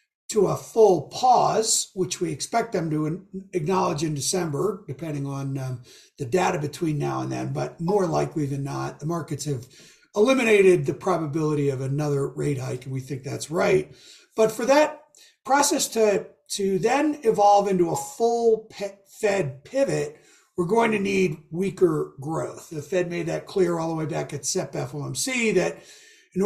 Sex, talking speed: male, 165 wpm